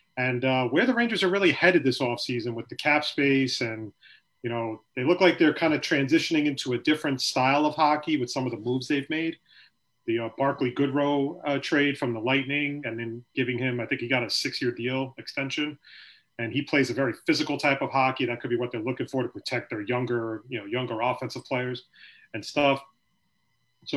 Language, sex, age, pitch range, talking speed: English, male, 30-49, 125-150 Hz, 215 wpm